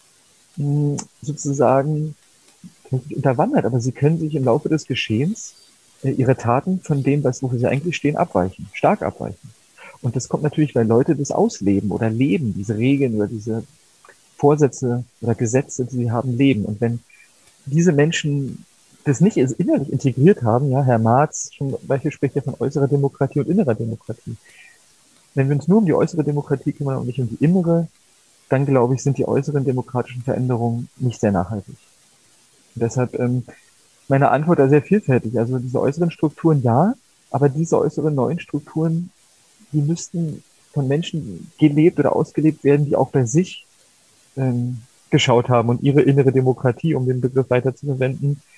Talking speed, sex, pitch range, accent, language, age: 160 wpm, male, 125-150 Hz, German, German, 40-59